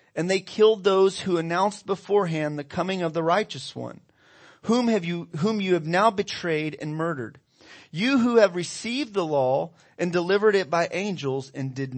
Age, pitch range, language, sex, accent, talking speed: 40-59, 135-190 Hz, English, male, American, 180 wpm